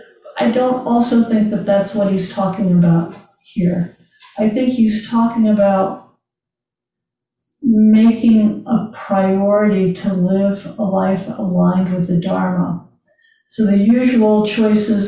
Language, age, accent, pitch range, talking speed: English, 50-69, American, 190-220 Hz, 125 wpm